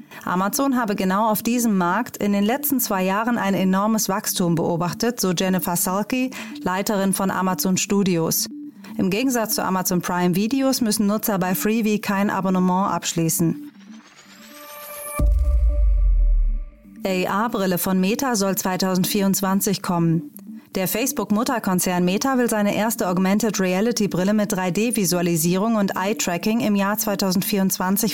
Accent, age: German, 30-49